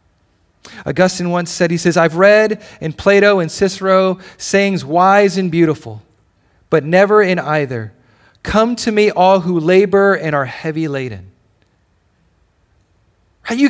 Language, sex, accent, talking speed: English, male, American, 130 wpm